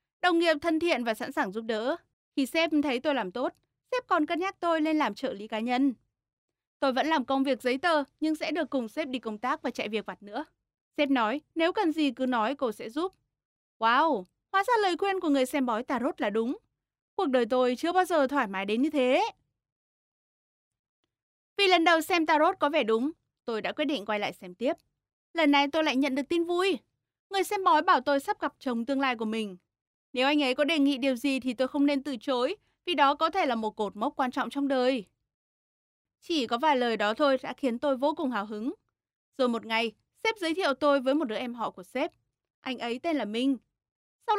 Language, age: Vietnamese, 20-39